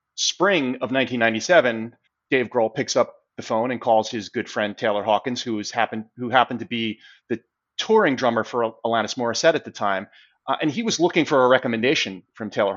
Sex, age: male, 30-49